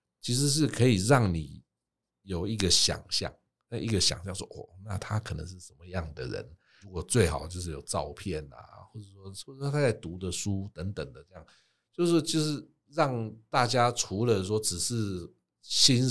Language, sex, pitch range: Chinese, male, 85-105 Hz